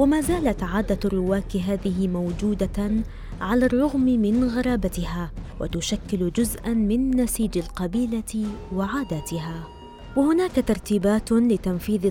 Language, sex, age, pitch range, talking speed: Arabic, female, 20-39, 185-240 Hz, 95 wpm